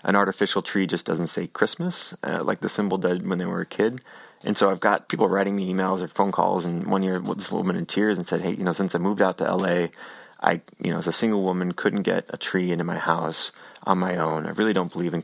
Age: 20-39